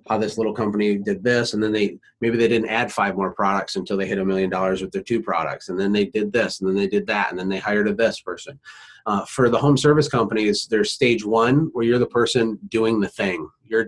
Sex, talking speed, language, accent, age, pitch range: male, 260 wpm, English, American, 30-49, 100-130 Hz